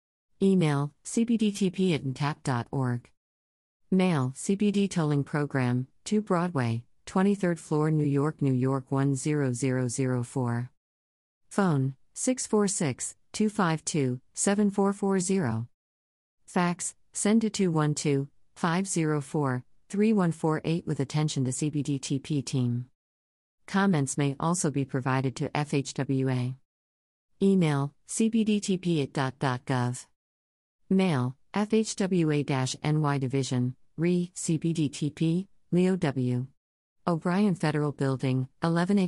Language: English